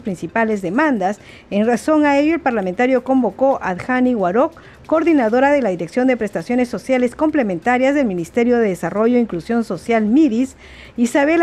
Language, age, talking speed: Spanish, 50-69, 150 wpm